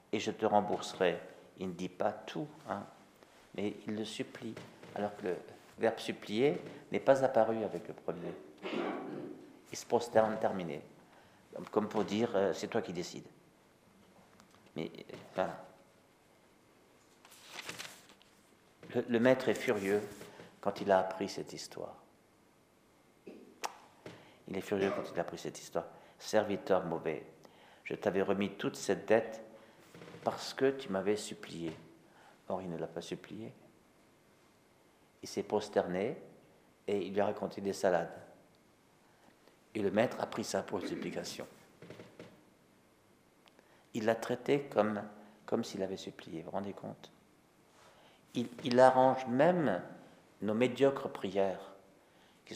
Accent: French